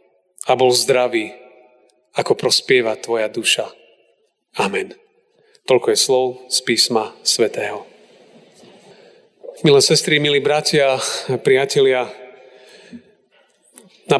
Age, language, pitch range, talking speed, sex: 40-59, Slovak, 135-195 Hz, 85 wpm, male